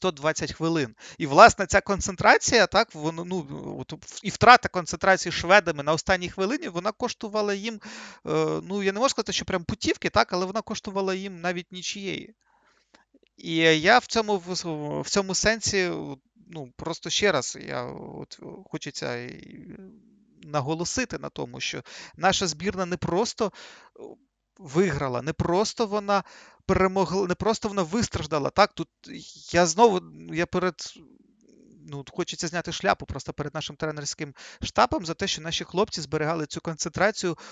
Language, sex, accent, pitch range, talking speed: Ukrainian, male, native, 160-205 Hz, 145 wpm